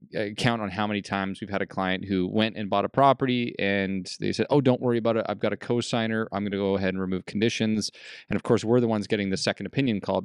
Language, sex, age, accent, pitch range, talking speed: English, male, 20-39, American, 100-125 Hz, 270 wpm